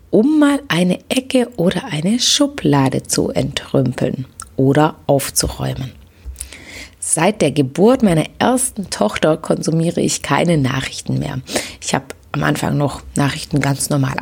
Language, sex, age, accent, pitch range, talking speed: English, female, 30-49, German, 140-200 Hz, 125 wpm